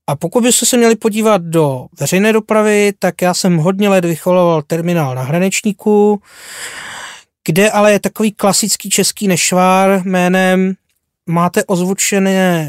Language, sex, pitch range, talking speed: Czech, male, 160-205 Hz, 130 wpm